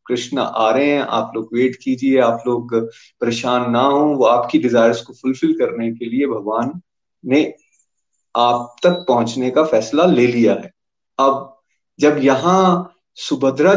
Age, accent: 30-49, native